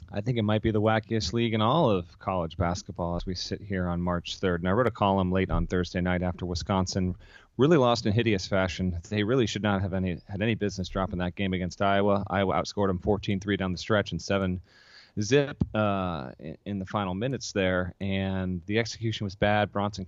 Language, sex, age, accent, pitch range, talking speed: English, male, 30-49, American, 90-105 Hz, 205 wpm